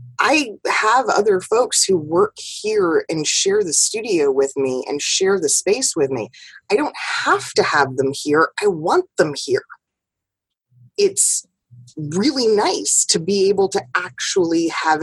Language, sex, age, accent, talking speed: English, female, 20-39, American, 155 wpm